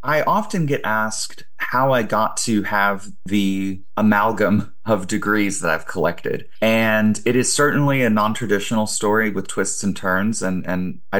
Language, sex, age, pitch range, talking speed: English, male, 30-49, 95-110 Hz, 160 wpm